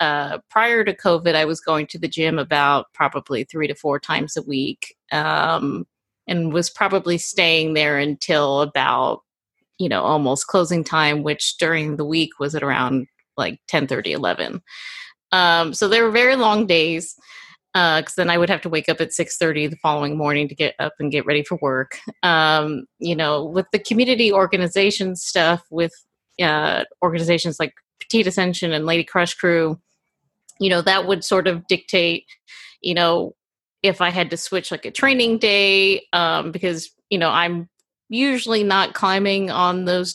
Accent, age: American, 30-49